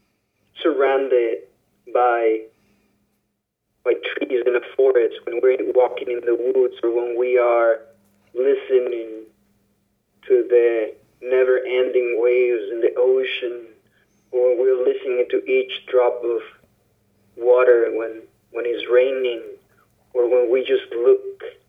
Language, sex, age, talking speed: English, male, 20-39, 120 wpm